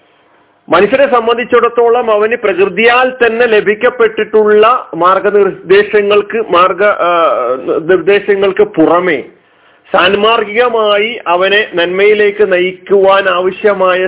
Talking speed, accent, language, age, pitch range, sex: 60 wpm, native, Malayalam, 40-59, 175-240 Hz, male